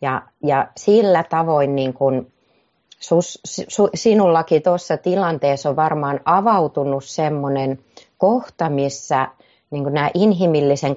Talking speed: 115 wpm